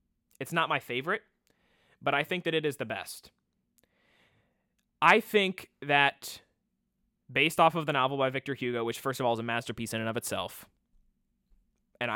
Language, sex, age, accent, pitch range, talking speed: English, male, 20-39, American, 115-145 Hz, 175 wpm